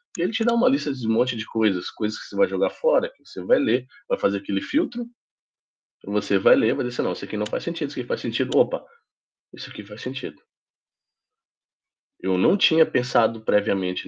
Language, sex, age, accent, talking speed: Portuguese, male, 20-39, Brazilian, 215 wpm